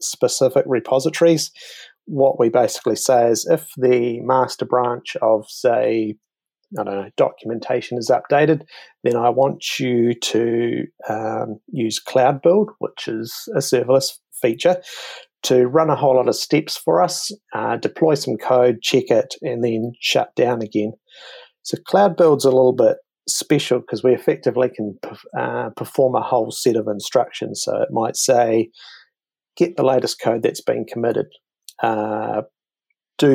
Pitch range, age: 115-135 Hz, 30-49